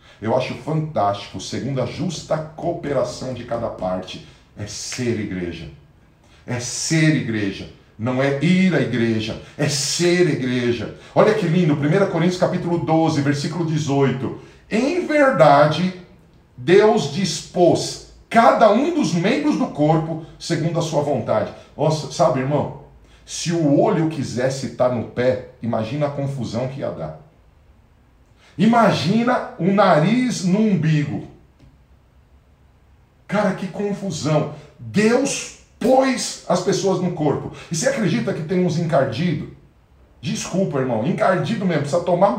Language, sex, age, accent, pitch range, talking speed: Portuguese, male, 50-69, Brazilian, 130-190 Hz, 125 wpm